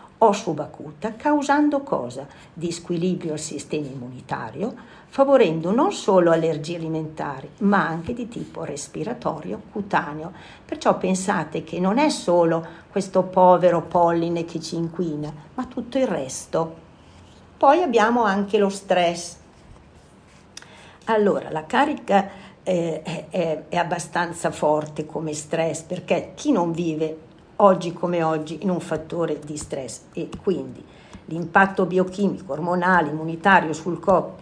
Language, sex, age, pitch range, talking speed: Italian, female, 50-69, 160-195 Hz, 125 wpm